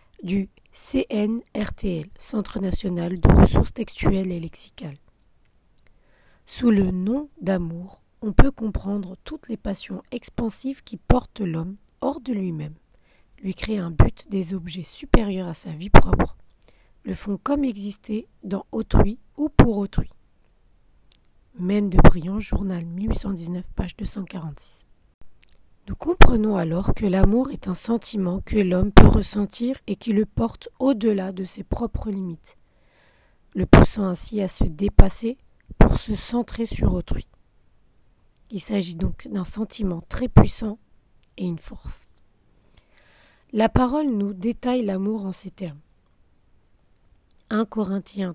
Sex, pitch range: female, 170-220 Hz